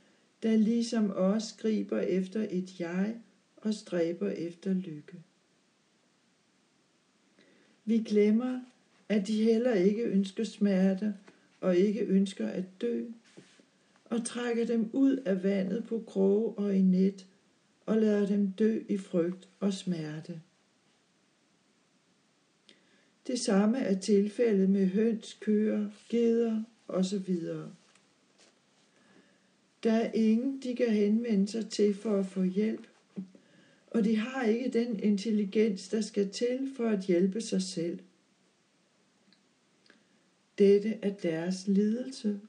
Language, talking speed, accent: Danish, 115 wpm, native